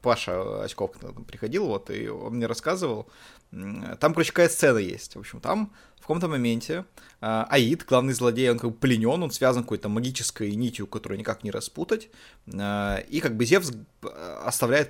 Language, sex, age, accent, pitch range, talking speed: Russian, male, 20-39, native, 115-160 Hz, 160 wpm